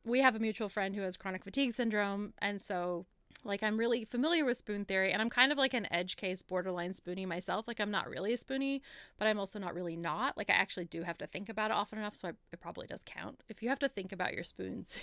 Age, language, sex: 20-39, English, female